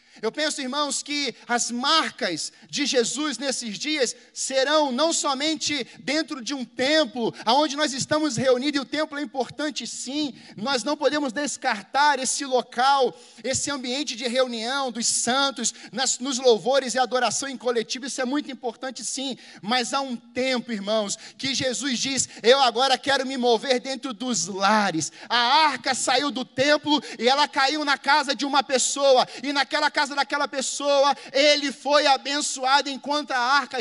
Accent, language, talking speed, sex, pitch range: Brazilian, Portuguese, 160 wpm, male, 245-285 Hz